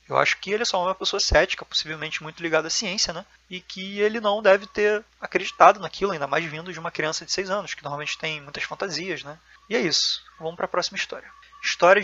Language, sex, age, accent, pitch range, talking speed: Portuguese, male, 20-39, Brazilian, 155-190 Hz, 235 wpm